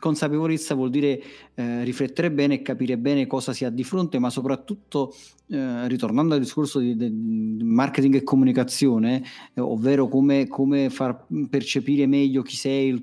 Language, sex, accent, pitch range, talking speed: Italian, male, native, 135-160 Hz, 160 wpm